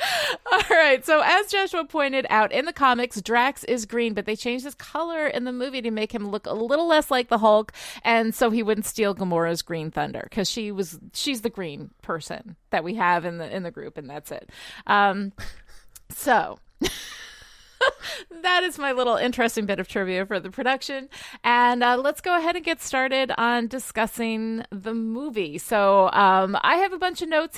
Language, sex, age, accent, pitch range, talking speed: English, female, 30-49, American, 185-245 Hz, 195 wpm